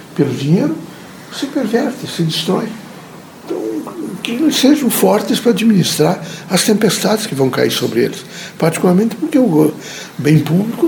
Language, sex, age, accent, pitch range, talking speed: Portuguese, male, 60-79, Brazilian, 160-225 Hz, 140 wpm